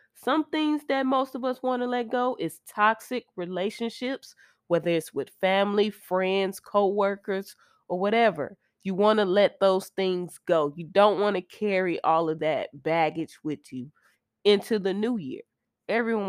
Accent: American